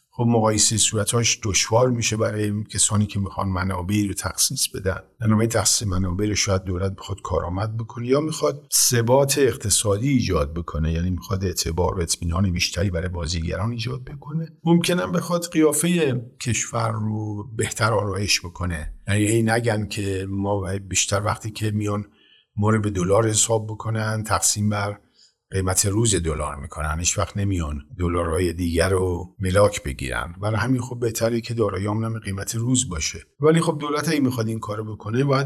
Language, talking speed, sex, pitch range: Persian, 150 wpm, male, 95-115 Hz